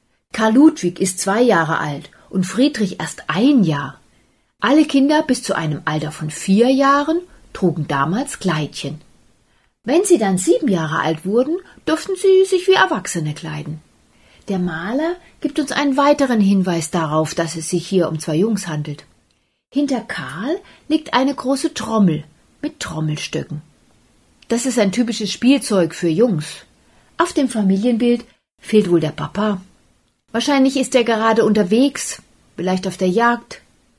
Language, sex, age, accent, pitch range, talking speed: German, female, 40-59, German, 170-255 Hz, 145 wpm